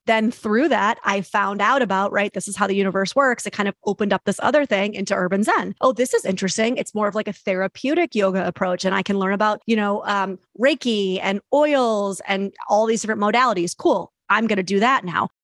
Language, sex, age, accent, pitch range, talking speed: English, female, 30-49, American, 190-235 Hz, 235 wpm